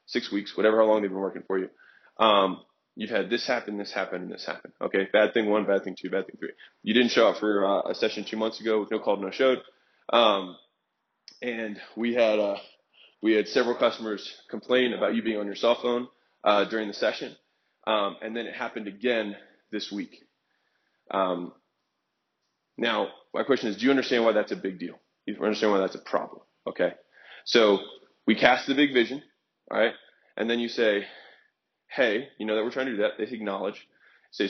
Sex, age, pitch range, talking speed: male, 20-39, 100-120 Hz, 205 wpm